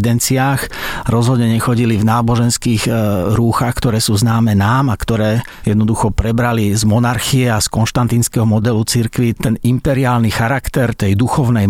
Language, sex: Slovak, male